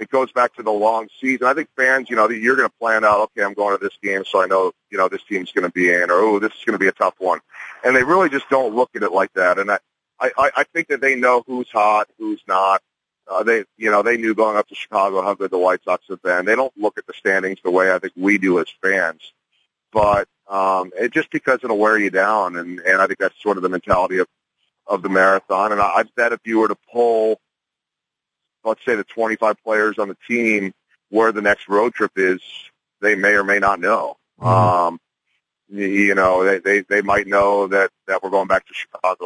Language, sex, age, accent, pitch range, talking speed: English, male, 40-59, American, 95-110 Hz, 245 wpm